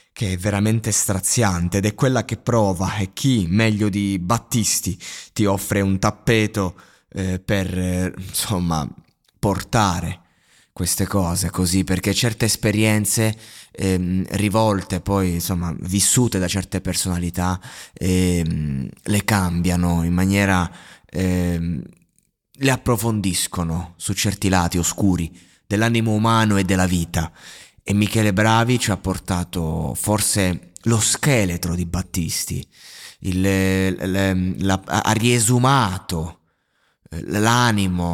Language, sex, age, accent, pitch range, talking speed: Italian, male, 20-39, native, 90-115 Hz, 115 wpm